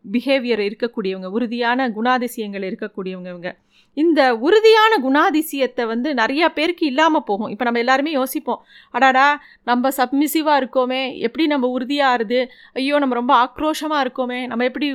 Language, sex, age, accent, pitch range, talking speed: Tamil, female, 30-49, native, 235-310 Hz, 125 wpm